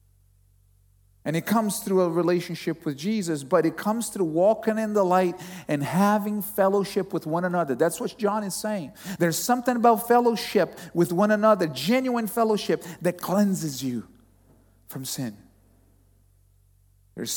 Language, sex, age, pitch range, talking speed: English, male, 40-59, 165-215 Hz, 145 wpm